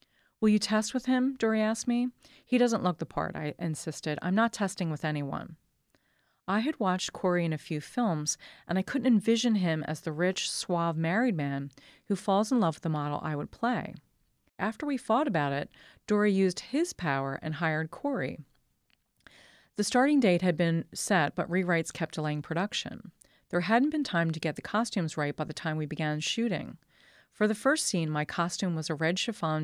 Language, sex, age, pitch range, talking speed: English, female, 40-59, 160-225 Hz, 195 wpm